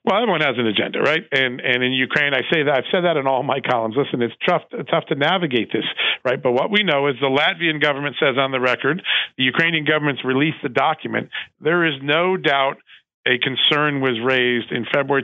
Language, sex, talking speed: English, male, 220 wpm